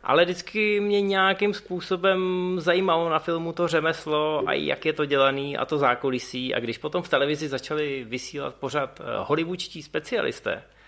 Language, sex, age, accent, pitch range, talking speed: Czech, male, 20-39, native, 115-155 Hz, 155 wpm